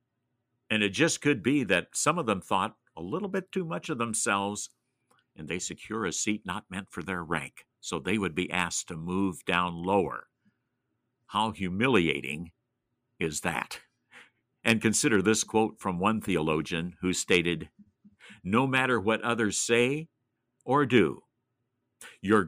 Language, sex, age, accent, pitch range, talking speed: English, male, 60-79, American, 100-150 Hz, 150 wpm